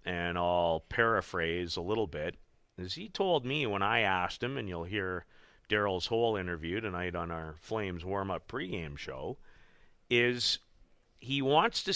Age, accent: 40-59, American